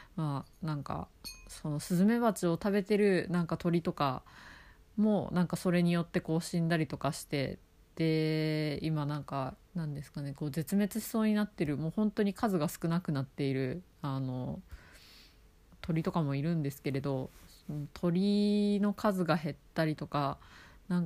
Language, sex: Japanese, female